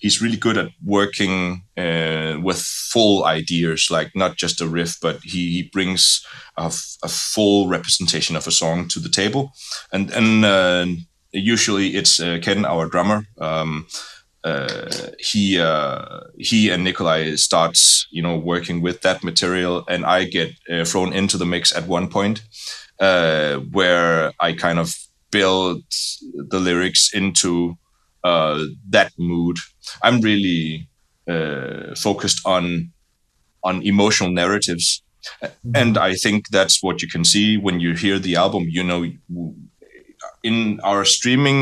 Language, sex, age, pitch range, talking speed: English, male, 20-39, 85-110 Hz, 145 wpm